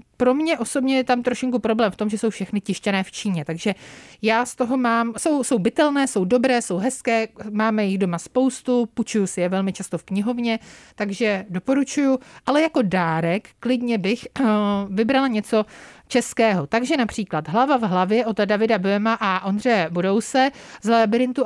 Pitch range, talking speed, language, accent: 200-240 Hz, 175 wpm, Czech, native